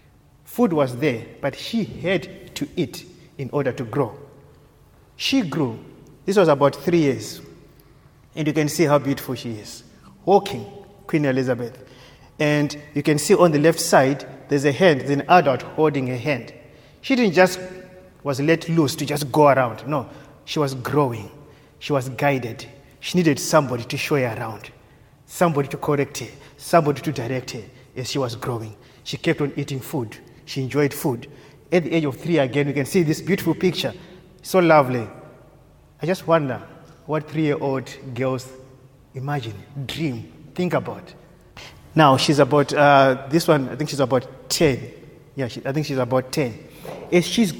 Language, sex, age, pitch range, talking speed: English, male, 30-49, 130-160 Hz, 170 wpm